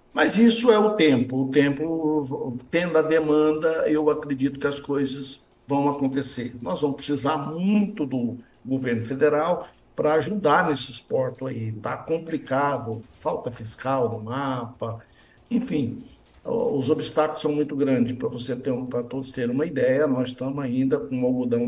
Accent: Brazilian